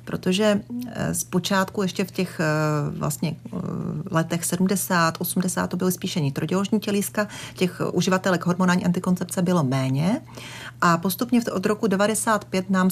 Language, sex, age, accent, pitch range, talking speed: Czech, female, 40-59, native, 175-205 Hz, 125 wpm